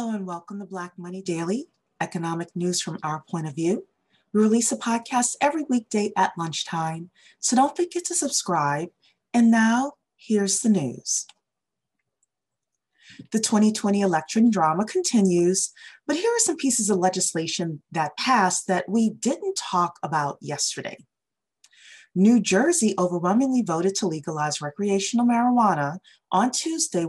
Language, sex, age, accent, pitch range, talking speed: English, female, 30-49, American, 170-235 Hz, 135 wpm